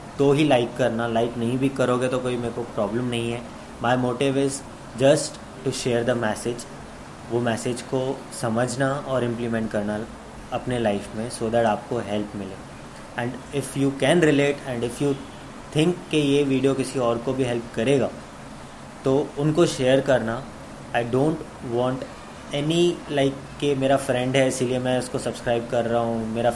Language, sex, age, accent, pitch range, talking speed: Hindi, male, 20-39, native, 120-135 Hz, 180 wpm